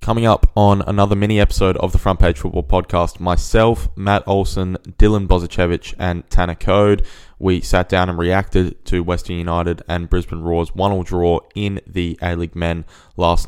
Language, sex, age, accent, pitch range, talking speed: English, male, 20-39, Australian, 90-100 Hz, 165 wpm